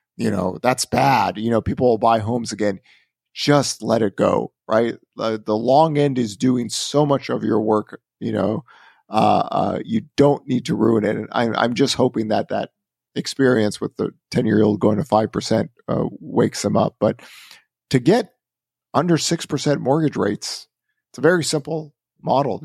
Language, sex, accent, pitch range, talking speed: English, male, American, 105-135 Hz, 185 wpm